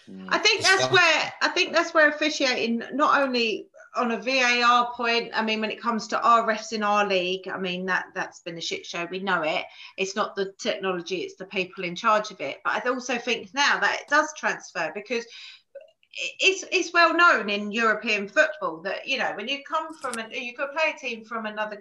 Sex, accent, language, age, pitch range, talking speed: female, British, English, 30-49, 205-280 Hz, 220 wpm